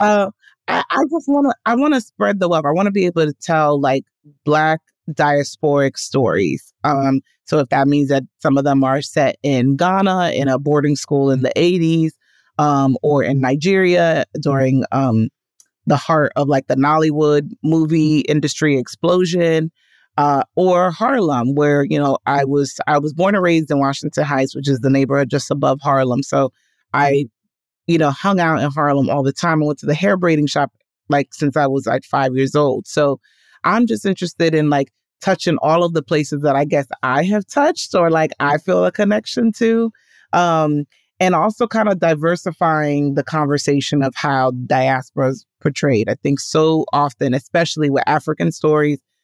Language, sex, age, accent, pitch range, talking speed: English, female, 30-49, American, 140-170 Hz, 185 wpm